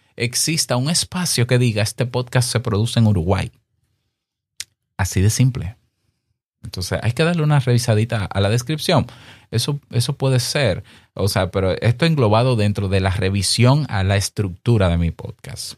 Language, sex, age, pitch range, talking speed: Spanish, male, 30-49, 95-125 Hz, 160 wpm